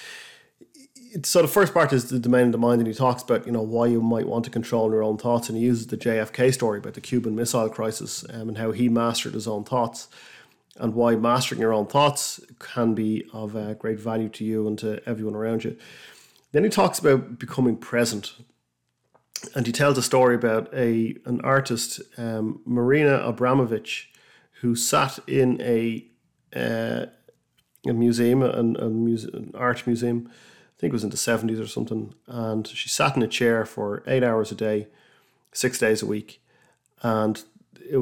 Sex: male